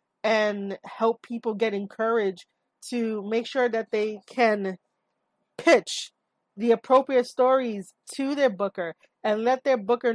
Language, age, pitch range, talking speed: English, 20-39, 205-255 Hz, 130 wpm